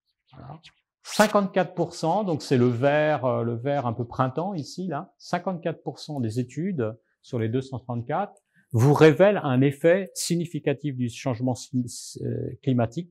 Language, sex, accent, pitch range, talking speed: French, male, French, 115-155 Hz, 115 wpm